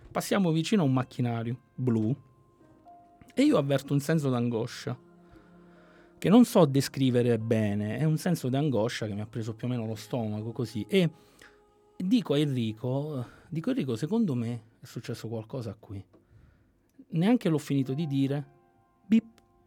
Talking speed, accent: 145 wpm, native